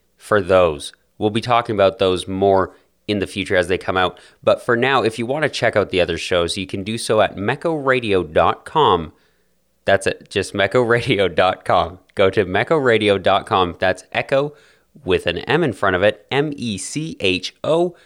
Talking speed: 165 wpm